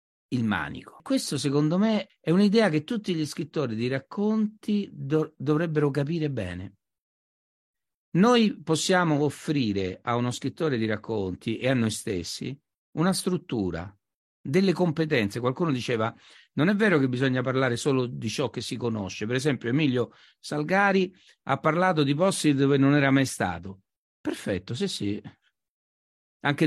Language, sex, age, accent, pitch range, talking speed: Italian, male, 60-79, native, 100-145 Hz, 140 wpm